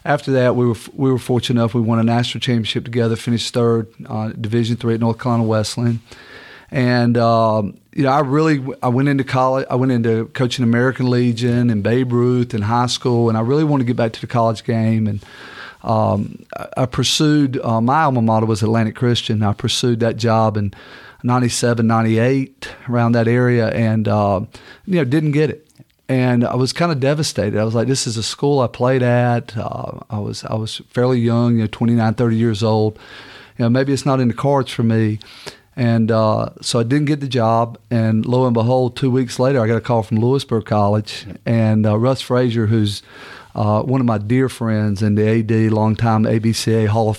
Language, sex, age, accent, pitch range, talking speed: English, male, 40-59, American, 110-130 Hz, 210 wpm